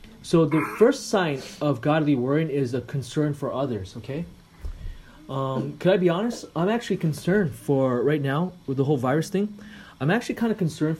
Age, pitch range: 30-49, 130-170 Hz